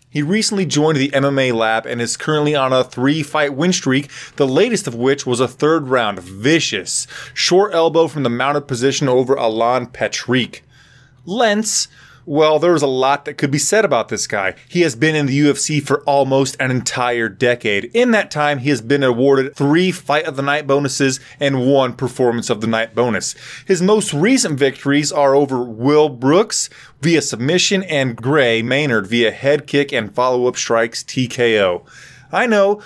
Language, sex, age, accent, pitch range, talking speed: English, male, 20-39, American, 125-155 Hz, 175 wpm